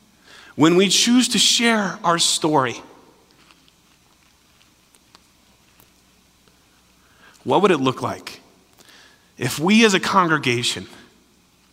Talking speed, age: 85 wpm, 30-49